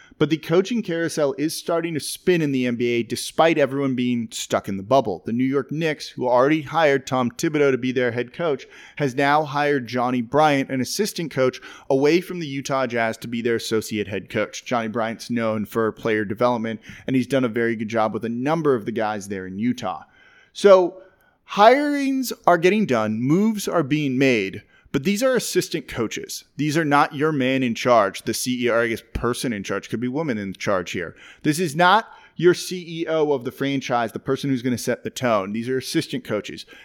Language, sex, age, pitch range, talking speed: English, male, 30-49, 120-155 Hz, 205 wpm